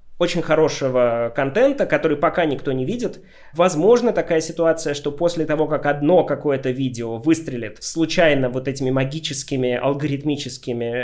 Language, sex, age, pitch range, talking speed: Ukrainian, male, 20-39, 130-165 Hz, 130 wpm